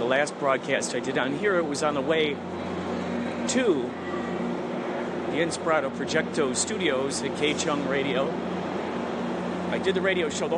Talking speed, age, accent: 145 wpm, 40-59, American